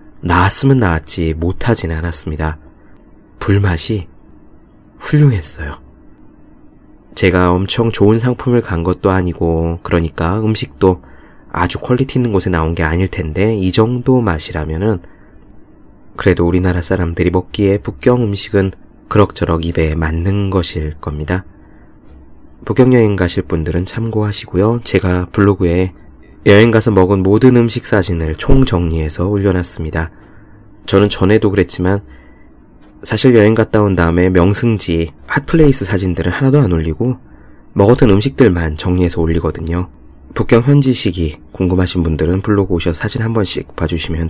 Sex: male